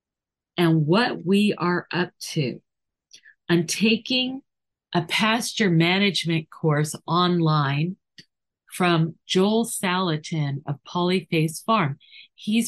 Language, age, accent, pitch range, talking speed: English, 50-69, American, 155-200 Hz, 95 wpm